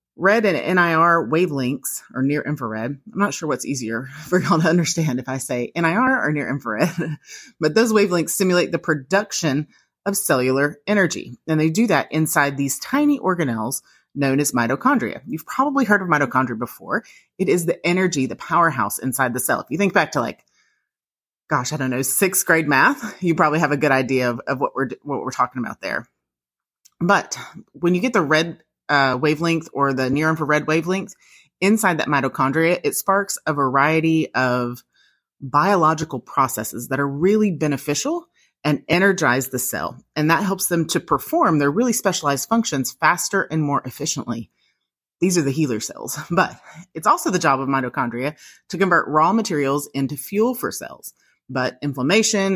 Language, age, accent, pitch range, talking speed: English, 30-49, American, 135-185 Hz, 170 wpm